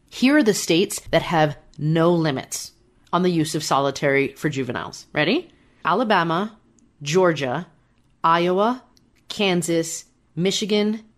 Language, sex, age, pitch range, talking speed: English, female, 30-49, 150-205 Hz, 115 wpm